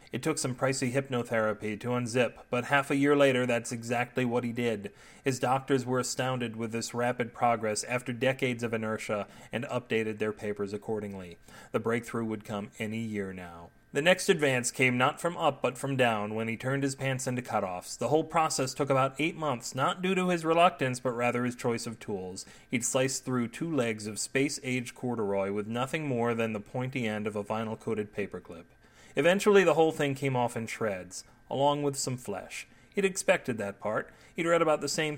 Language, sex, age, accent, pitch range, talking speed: English, male, 30-49, American, 115-140 Hz, 200 wpm